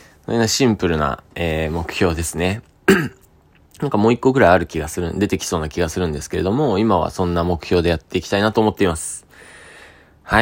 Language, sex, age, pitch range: Japanese, male, 20-39, 85-105 Hz